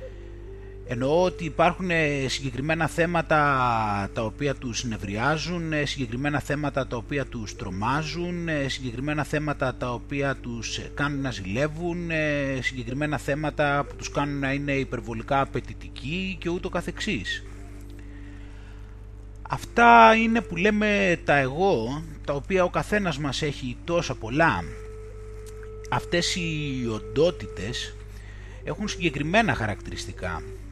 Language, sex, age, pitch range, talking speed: Greek, male, 30-49, 110-155 Hz, 105 wpm